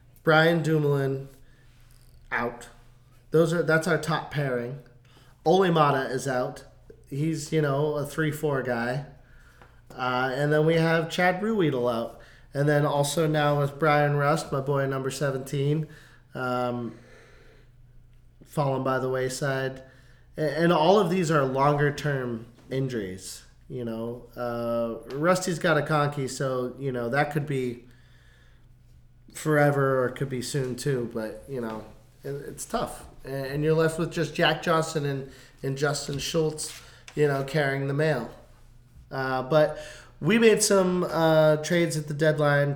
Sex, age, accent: male, 20-39, American